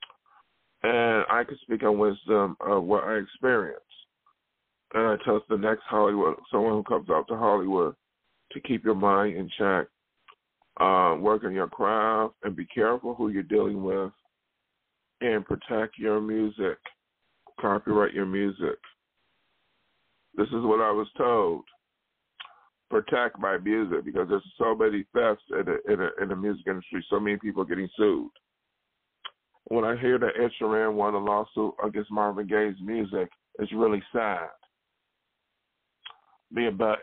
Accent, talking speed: American, 145 wpm